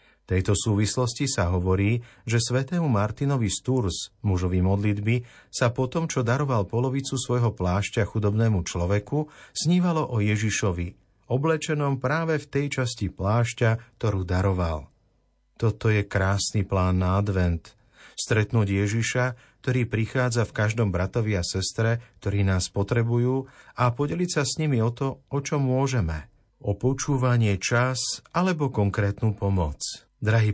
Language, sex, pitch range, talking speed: Slovak, male, 100-130 Hz, 130 wpm